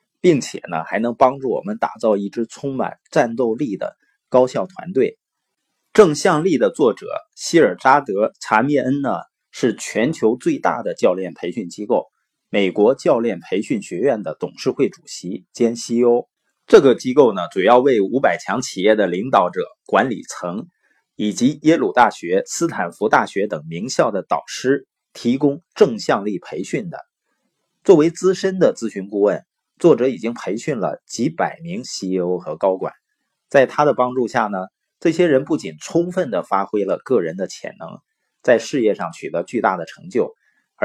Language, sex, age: Chinese, male, 30-49